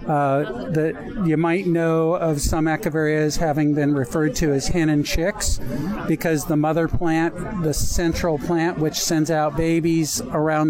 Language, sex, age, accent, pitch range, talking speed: English, male, 50-69, American, 155-175 Hz, 155 wpm